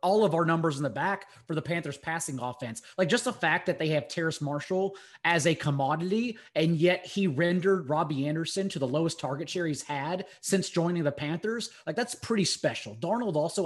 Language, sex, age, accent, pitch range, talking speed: English, male, 20-39, American, 145-180 Hz, 205 wpm